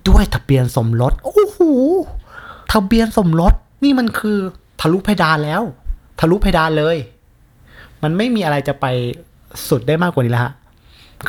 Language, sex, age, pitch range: Thai, male, 20-39, 125-160 Hz